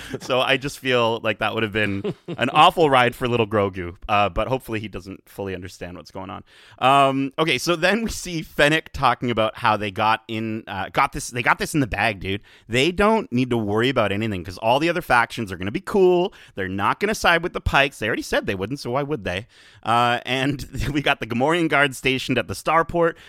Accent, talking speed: American, 240 wpm